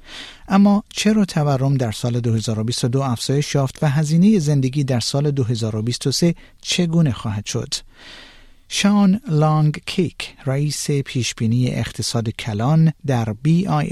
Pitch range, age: 120-165 Hz, 50-69